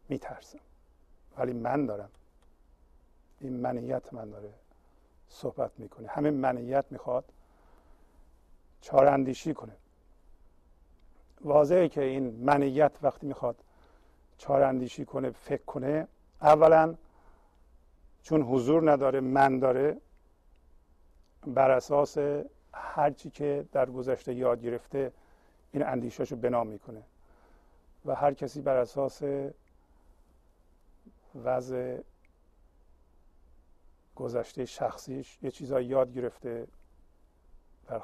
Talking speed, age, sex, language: 90 wpm, 50-69, male, Persian